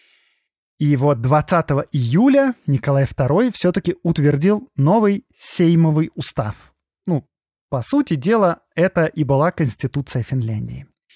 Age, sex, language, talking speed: 20-39, male, Russian, 110 wpm